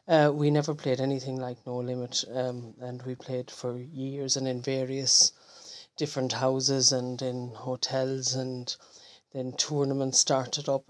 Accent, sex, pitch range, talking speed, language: Irish, female, 130-175 Hz, 150 wpm, English